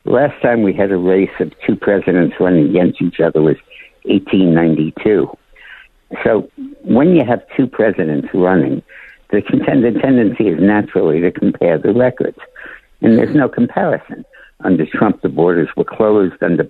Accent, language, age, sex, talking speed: American, English, 60-79, male, 150 wpm